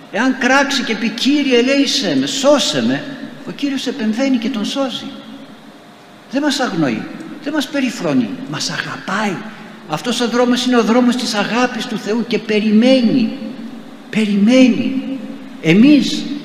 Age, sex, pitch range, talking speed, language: 60-79, male, 155-250 Hz, 135 wpm, Greek